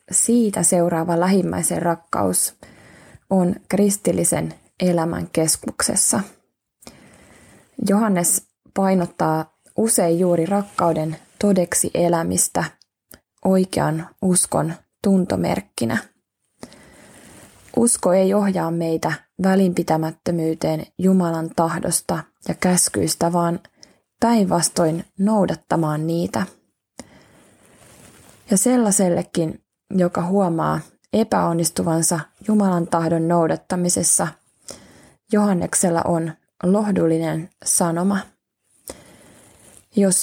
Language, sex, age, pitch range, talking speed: Finnish, female, 20-39, 165-195 Hz, 65 wpm